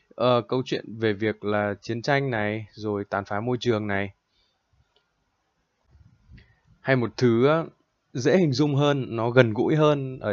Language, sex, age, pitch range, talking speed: Vietnamese, male, 20-39, 110-135 Hz, 150 wpm